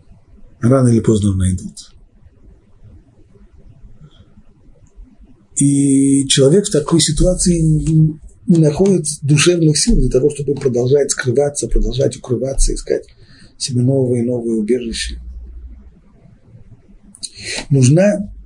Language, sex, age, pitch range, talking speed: Russian, male, 50-69, 115-155 Hz, 90 wpm